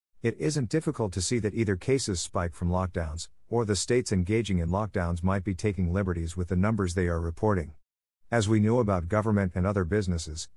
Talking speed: 200 wpm